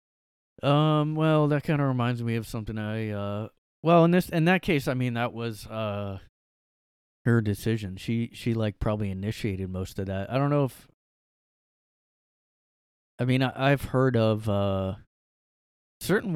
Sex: male